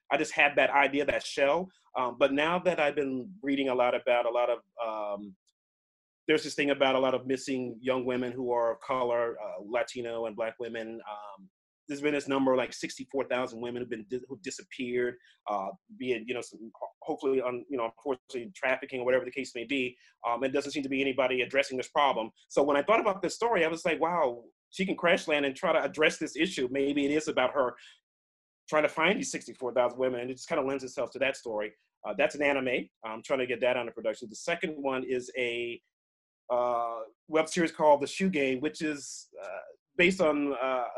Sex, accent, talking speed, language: male, American, 225 wpm, English